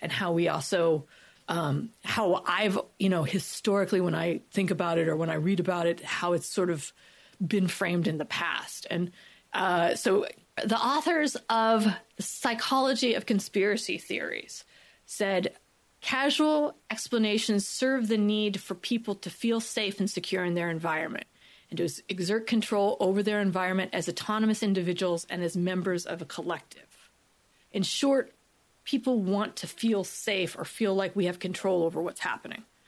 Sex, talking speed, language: female, 160 wpm, English